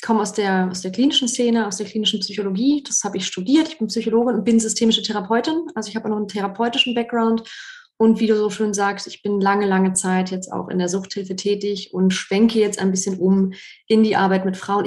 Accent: German